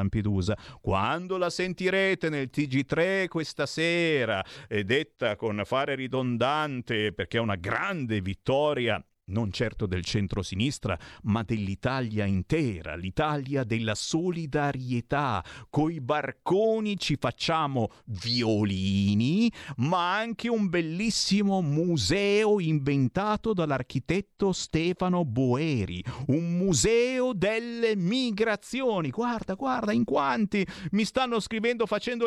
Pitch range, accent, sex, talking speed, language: 110-175 Hz, native, male, 100 wpm, Italian